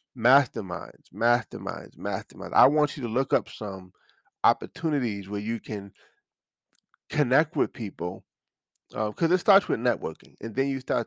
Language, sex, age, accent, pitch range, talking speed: English, male, 20-39, American, 110-140 Hz, 145 wpm